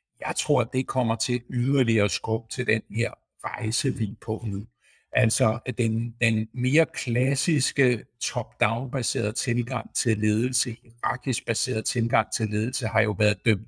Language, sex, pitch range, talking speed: Danish, male, 110-125 Hz, 145 wpm